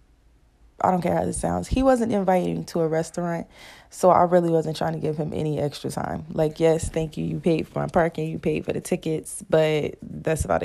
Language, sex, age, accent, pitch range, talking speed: English, female, 20-39, American, 155-180 Hz, 225 wpm